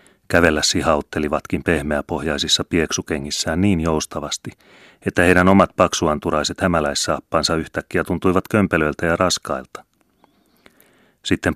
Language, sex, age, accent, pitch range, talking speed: Finnish, male, 30-49, native, 75-95 Hz, 90 wpm